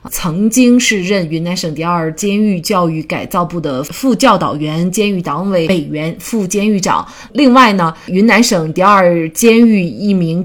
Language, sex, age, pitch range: Chinese, female, 30-49, 165-210 Hz